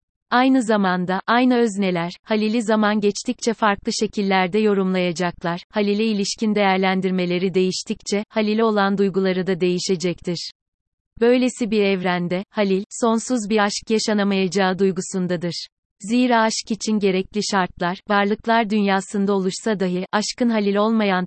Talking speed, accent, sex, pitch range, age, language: 115 wpm, native, female, 190-220 Hz, 30-49, Turkish